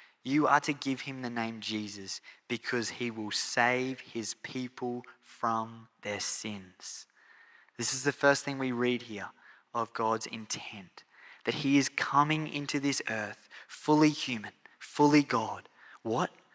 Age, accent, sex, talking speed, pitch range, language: 20-39, Australian, male, 145 wpm, 115-145 Hz, English